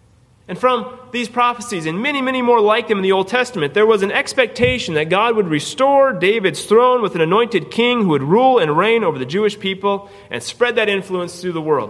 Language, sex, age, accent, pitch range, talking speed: English, male, 30-49, American, 155-230 Hz, 220 wpm